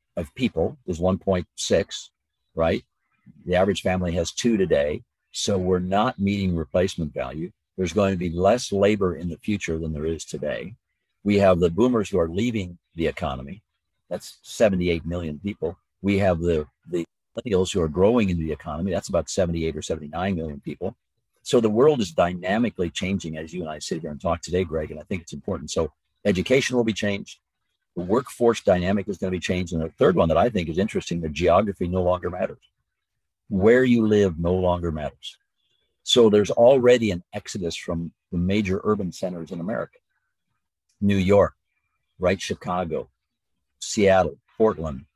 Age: 50-69